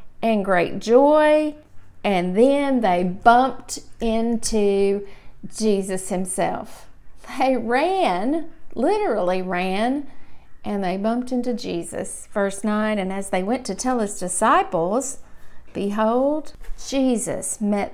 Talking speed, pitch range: 105 wpm, 205-280 Hz